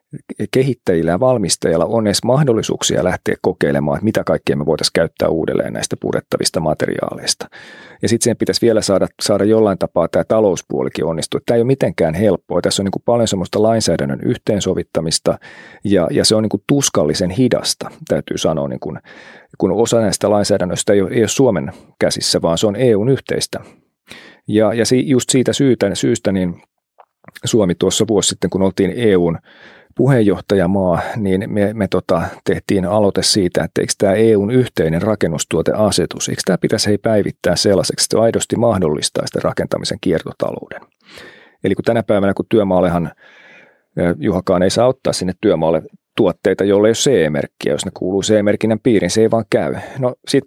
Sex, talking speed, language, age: male, 165 wpm, Finnish, 40-59